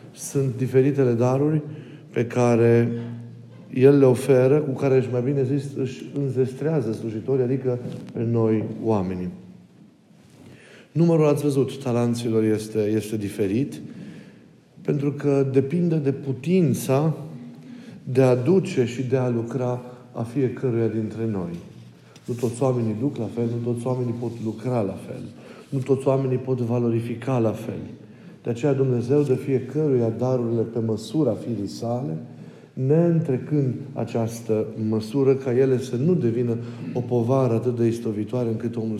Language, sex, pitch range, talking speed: Romanian, male, 110-135 Hz, 135 wpm